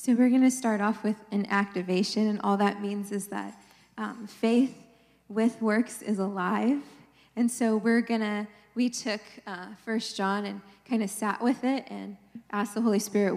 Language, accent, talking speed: English, American, 180 wpm